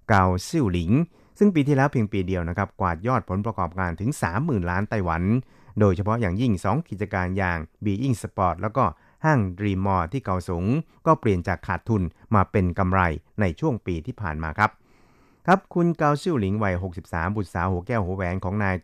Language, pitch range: Thai, 90-115 Hz